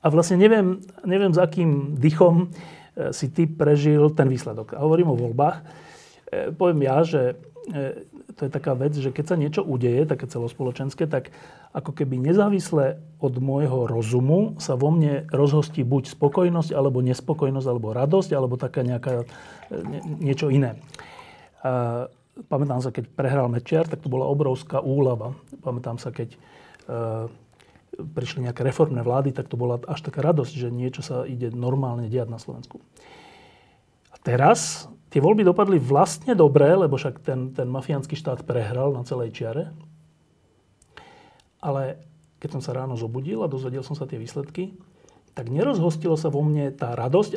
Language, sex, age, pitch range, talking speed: Slovak, male, 40-59, 130-160 Hz, 155 wpm